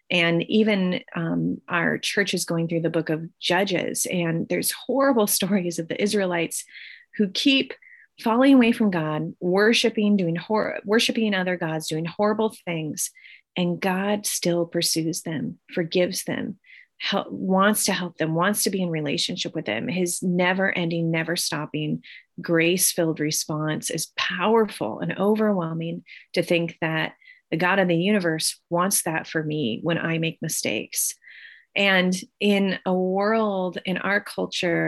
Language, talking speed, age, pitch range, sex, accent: English, 150 wpm, 30-49, 165-200 Hz, female, American